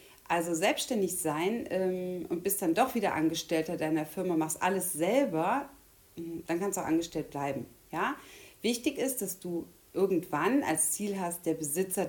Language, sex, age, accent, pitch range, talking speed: German, female, 40-59, German, 155-185 Hz, 155 wpm